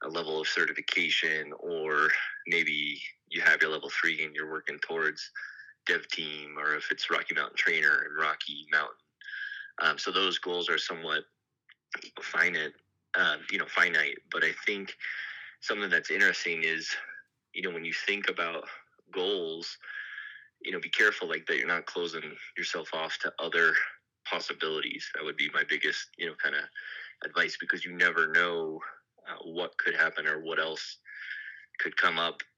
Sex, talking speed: male, 165 wpm